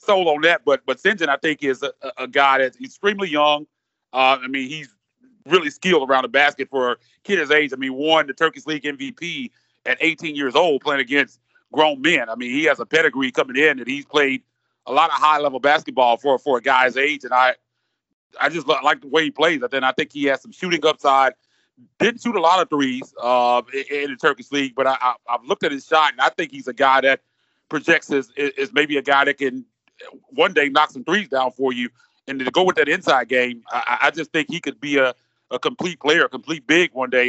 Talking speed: 240 wpm